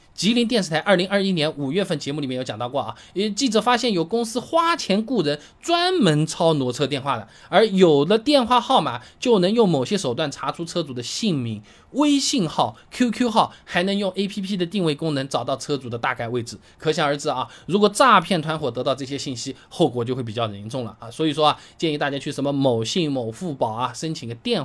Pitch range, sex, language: 135-210 Hz, male, Chinese